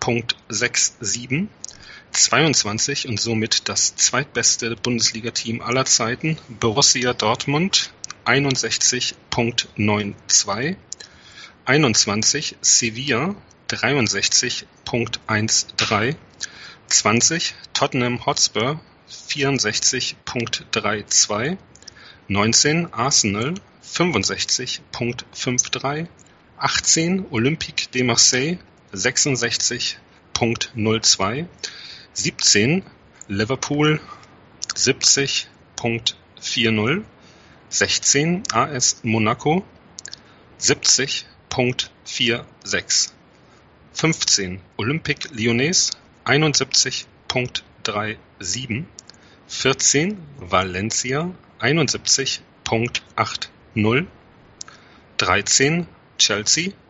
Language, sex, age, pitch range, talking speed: German, male, 40-59, 115-140 Hz, 45 wpm